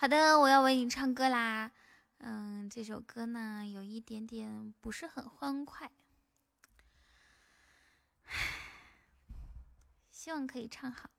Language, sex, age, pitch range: Chinese, female, 10-29, 225-280 Hz